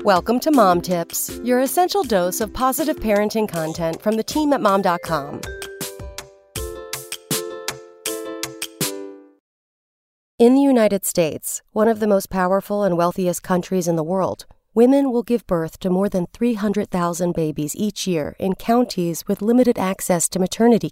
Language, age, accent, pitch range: English, 40-59, American, 170-220 Hz